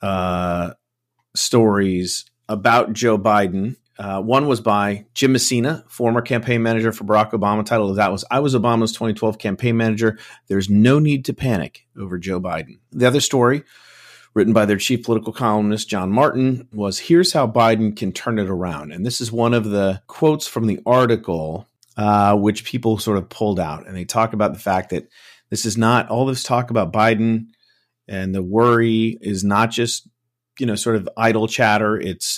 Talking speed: 185 wpm